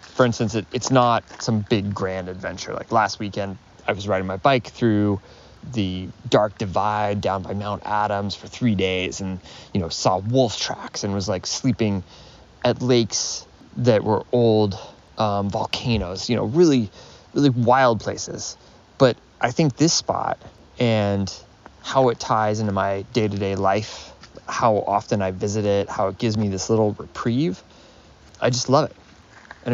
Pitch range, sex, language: 100-125 Hz, male, English